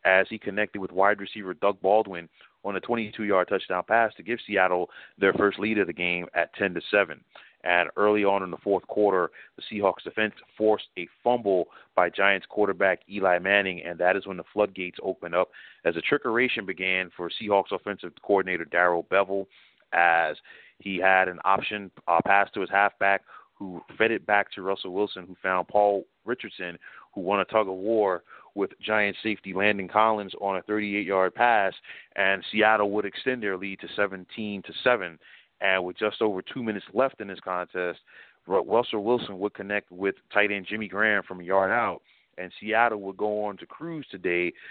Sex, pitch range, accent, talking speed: male, 90-105 Hz, American, 180 wpm